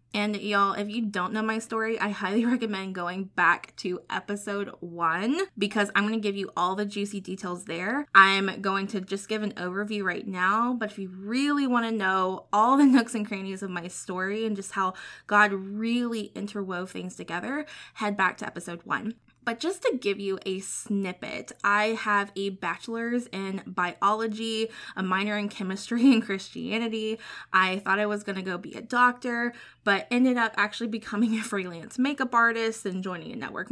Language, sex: English, female